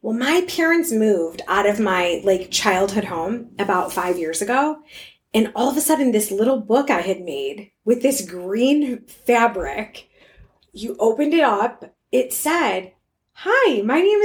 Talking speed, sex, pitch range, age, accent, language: 160 wpm, female, 205-270 Hz, 20-39, American, English